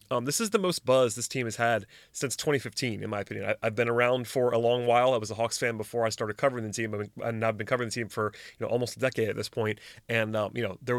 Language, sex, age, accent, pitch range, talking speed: English, male, 30-49, American, 110-125 Hz, 310 wpm